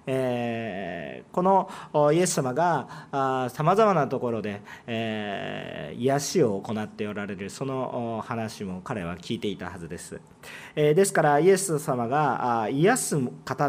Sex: male